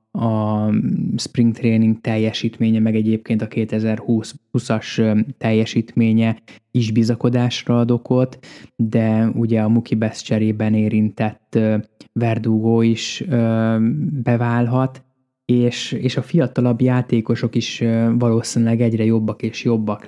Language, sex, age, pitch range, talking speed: Hungarian, male, 20-39, 110-120 Hz, 95 wpm